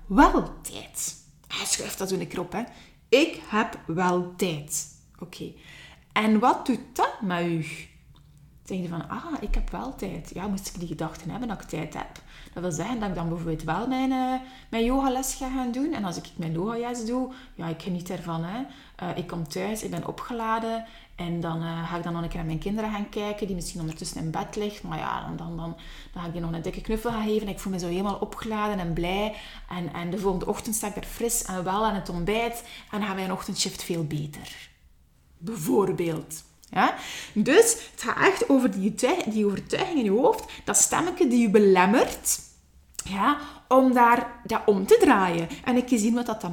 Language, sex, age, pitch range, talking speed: Dutch, female, 20-39, 175-235 Hz, 220 wpm